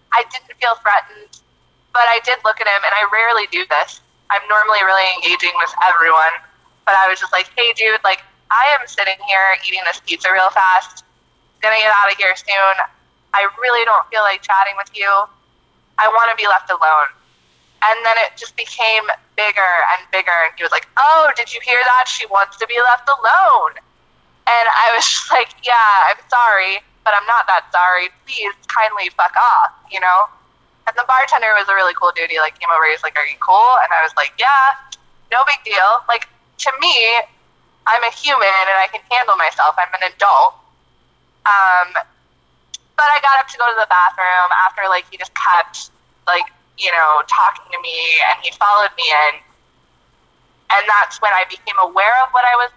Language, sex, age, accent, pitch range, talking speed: English, female, 20-39, American, 185-235 Hz, 200 wpm